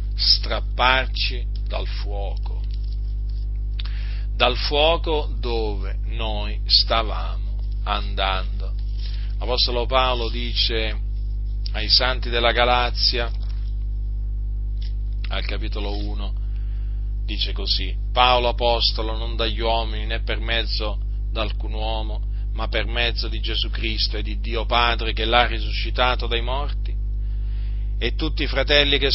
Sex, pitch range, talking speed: male, 100-120 Hz, 105 wpm